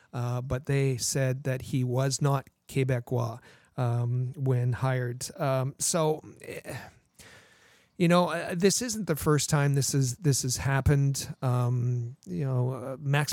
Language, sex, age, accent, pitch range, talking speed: English, male, 40-59, American, 130-150 Hz, 145 wpm